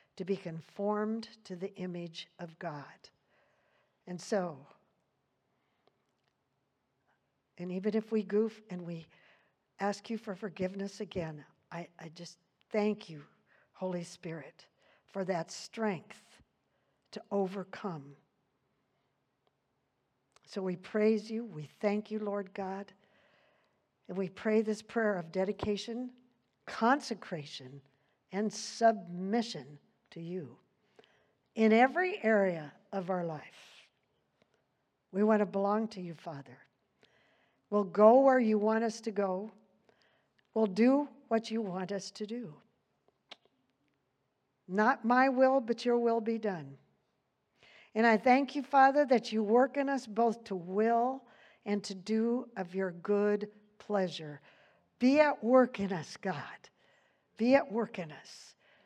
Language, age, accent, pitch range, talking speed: English, 60-79, American, 180-225 Hz, 125 wpm